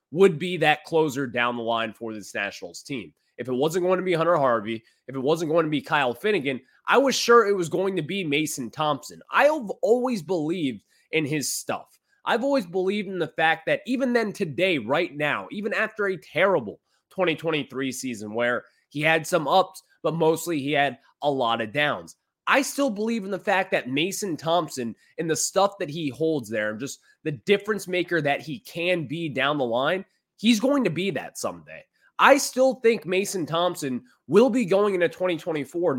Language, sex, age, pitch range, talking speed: English, male, 20-39, 145-200 Hz, 195 wpm